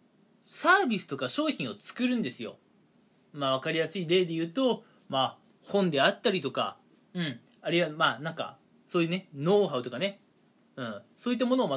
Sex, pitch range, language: male, 150-215 Hz, Japanese